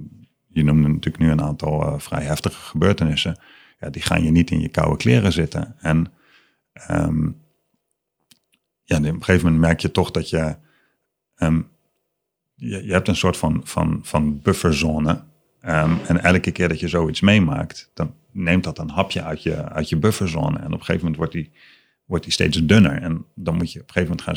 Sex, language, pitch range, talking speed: male, Dutch, 75-90 Hz, 175 wpm